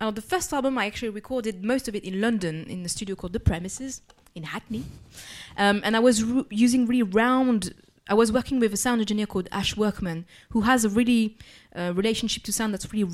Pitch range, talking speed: 190-225 Hz, 215 wpm